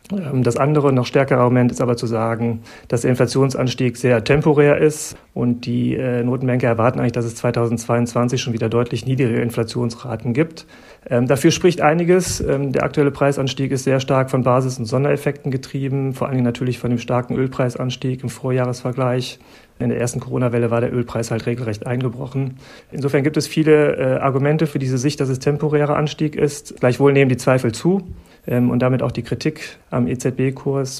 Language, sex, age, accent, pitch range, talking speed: German, male, 40-59, German, 120-140 Hz, 170 wpm